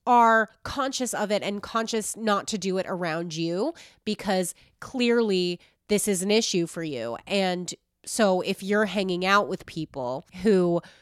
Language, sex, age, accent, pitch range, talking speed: English, female, 30-49, American, 175-215 Hz, 160 wpm